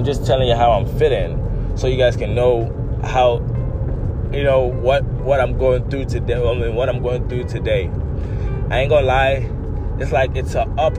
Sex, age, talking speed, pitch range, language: male, 20-39, 185 wpm, 110-125 Hz, English